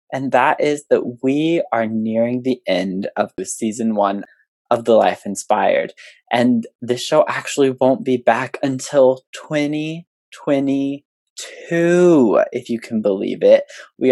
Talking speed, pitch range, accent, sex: 135 wpm, 115-160 Hz, American, male